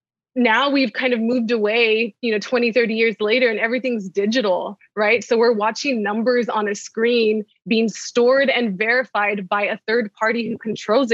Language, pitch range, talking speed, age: English, 210-245 Hz, 180 wpm, 20-39